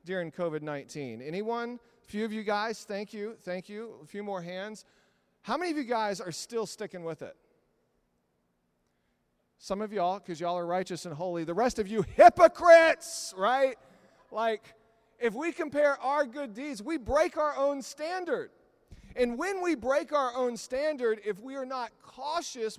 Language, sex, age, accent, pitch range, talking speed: English, male, 40-59, American, 150-250 Hz, 170 wpm